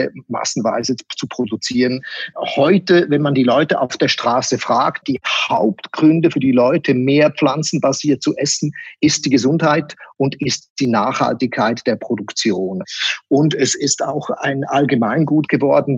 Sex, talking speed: male, 140 wpm